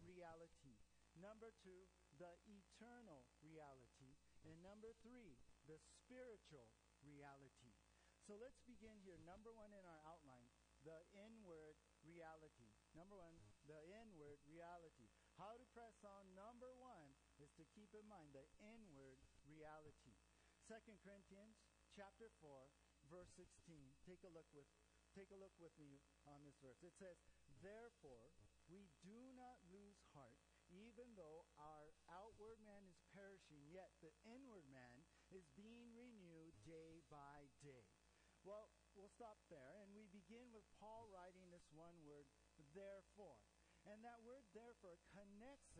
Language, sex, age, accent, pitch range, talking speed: English, male, 50-69, American, 155-215 Hz, 140 wpm